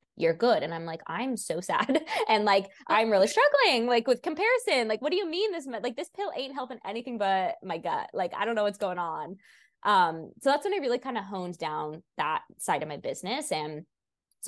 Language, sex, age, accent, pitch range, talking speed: English, female, 20-39, American, 160-235 Hz, 230 wpm